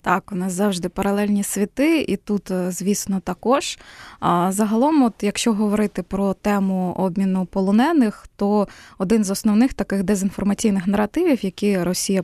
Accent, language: native, Ukrainian